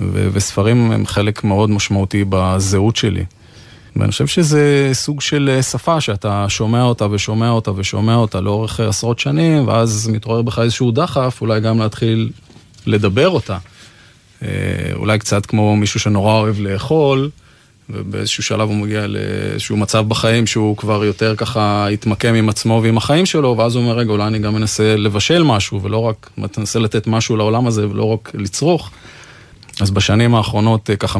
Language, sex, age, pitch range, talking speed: Hebrew, male, 20-39, 100-115 Hz, 160 wpm